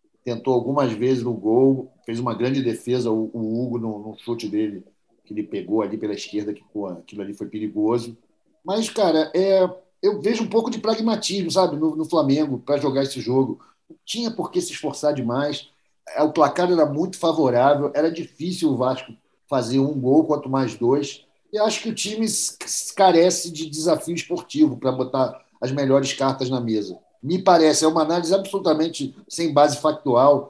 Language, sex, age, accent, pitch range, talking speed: Portuguese, male, 50-69, Brazilian, 135-190 Hz, 175 wpm